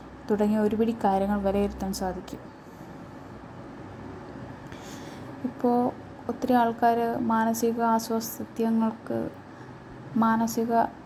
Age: 20-39